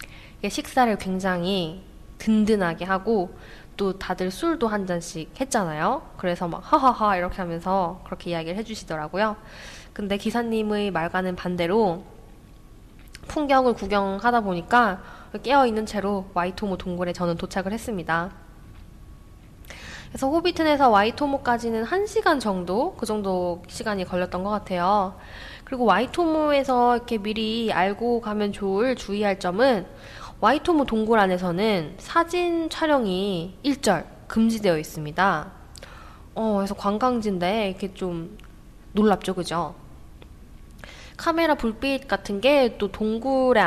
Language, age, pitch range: Korean, 10-29, 180-235 Hz